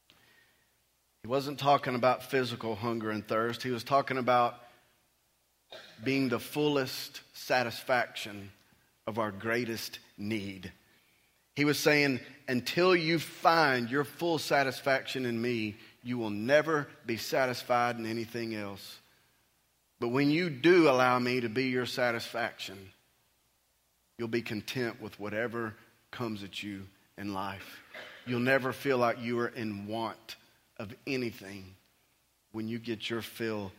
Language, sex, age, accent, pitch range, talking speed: English, male, 40-59, American, 110-140 Hz, 135 wpm